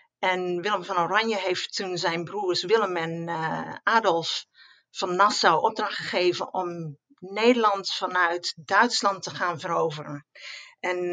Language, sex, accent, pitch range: Dutch, female, Dutch, 170-210 Hz